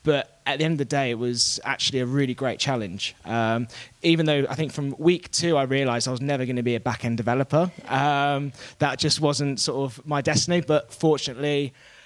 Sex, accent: male, British